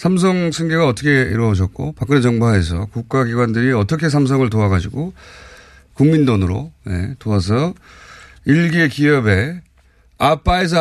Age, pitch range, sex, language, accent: 30-49, 110-170 Hz, male, Korean, native